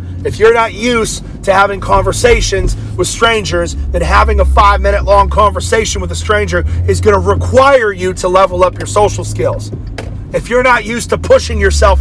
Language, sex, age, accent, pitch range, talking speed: English, male, 30-49, American, 70-105 Hz, 180 wpm